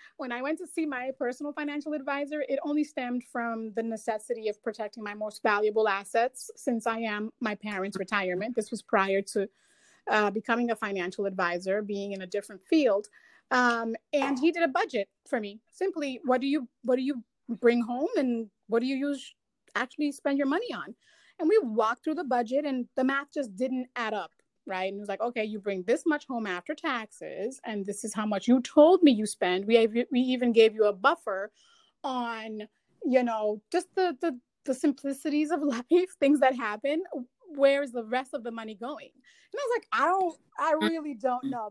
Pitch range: 220-290 Hz